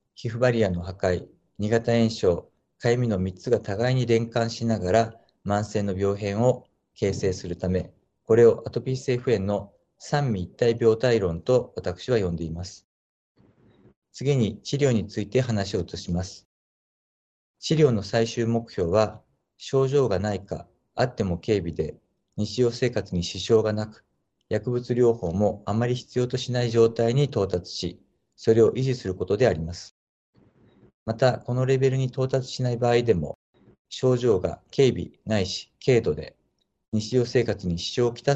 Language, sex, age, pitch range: Japanese, male, 50-69, 100-125 Hz